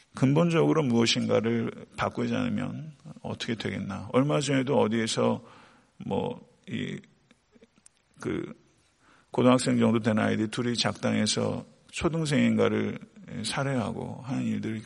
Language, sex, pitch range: Korean, male, 110-135 Hz